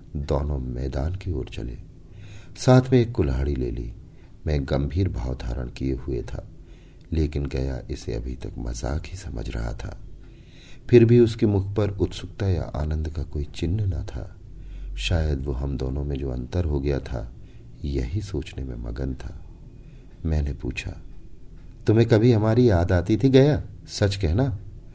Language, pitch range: Hindi, 75-105 Hz